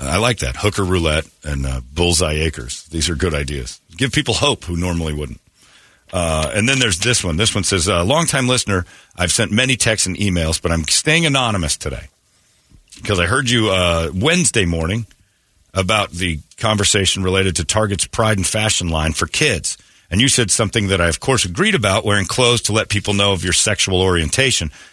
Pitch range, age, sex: 85-115 Hz, 40-59, male